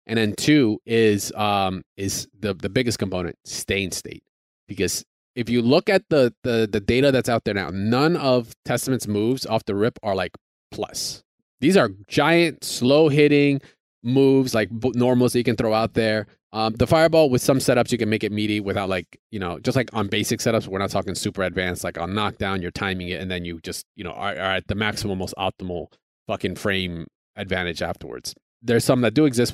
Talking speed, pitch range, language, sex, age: 210 wpm, 105-135 Hz, English, male, 20-39